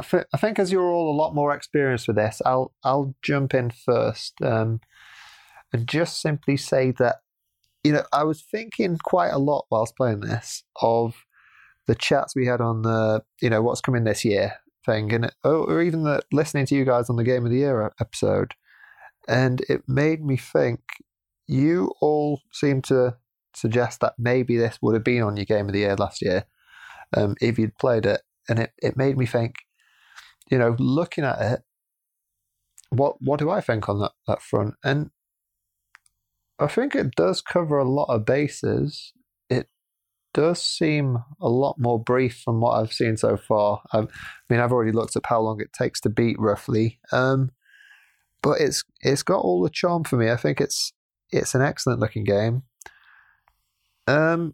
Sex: male